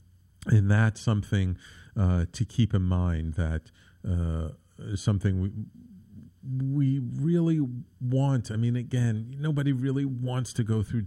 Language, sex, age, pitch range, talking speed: English, male, 50-69, 95-120 Hz, 135 wpm